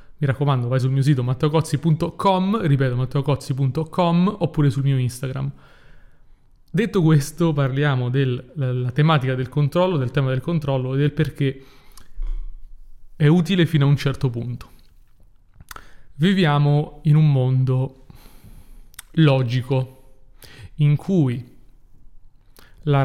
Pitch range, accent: 125-155 Hz, native